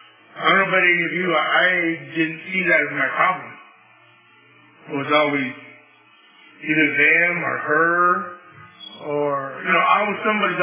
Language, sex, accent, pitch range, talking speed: English, male, American, 150-180 Hz, 160 wpm